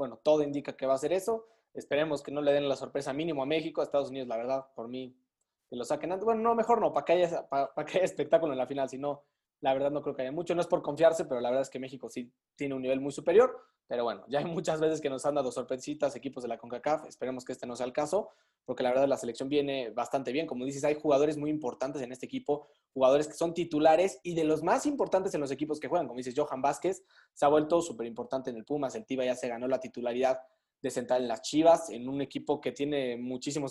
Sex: male